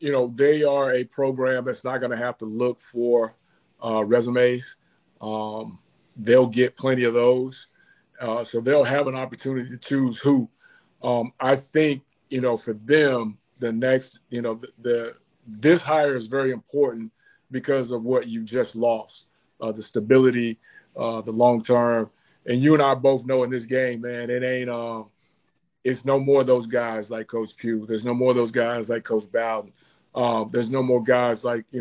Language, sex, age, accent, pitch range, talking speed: English, male, 40-59, American, 120-135 Hz, 190 wpm